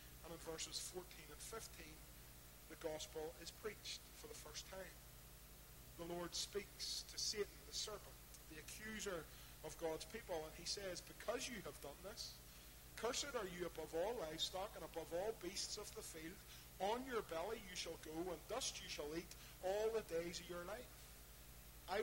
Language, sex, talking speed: English, male, 175 wpm